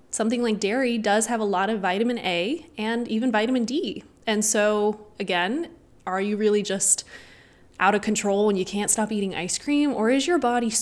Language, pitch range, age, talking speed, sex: English, 195-235 Hz, 20-39, 195 wpm, female